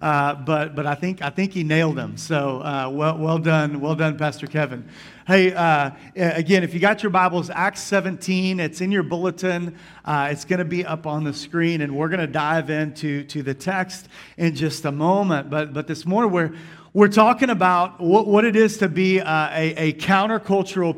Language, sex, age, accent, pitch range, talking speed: English, male, 40-59, American, 155-195 Hz, 205 wpm